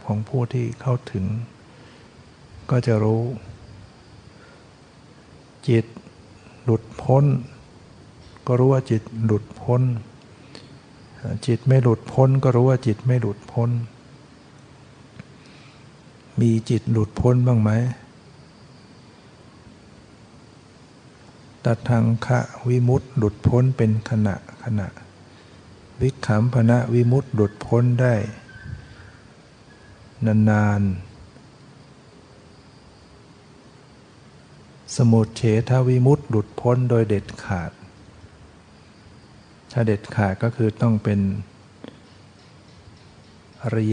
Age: 60-79